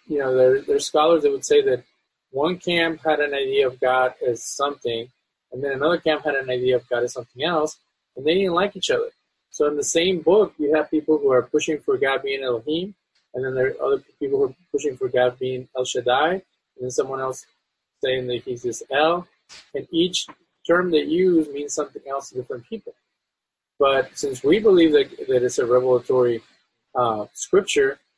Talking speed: 205 wpm